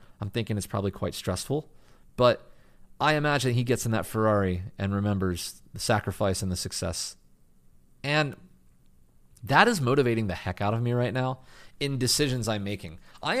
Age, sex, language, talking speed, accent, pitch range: 30-49, male, English, 165 wpm, American, 100-150 Hz